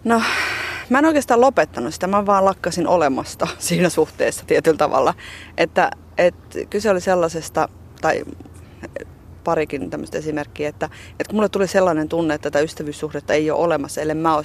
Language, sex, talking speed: Finnish, female, 160 wpm